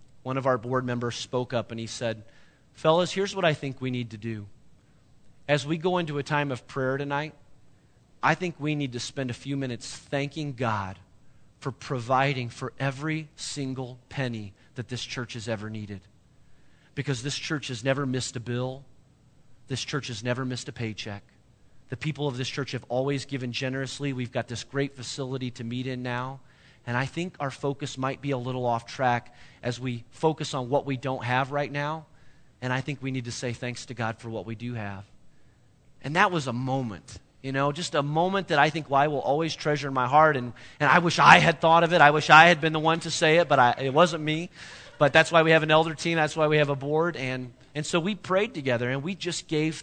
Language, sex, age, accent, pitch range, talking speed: English, male, 30-49, American, 125-150 Hz, 225 wpm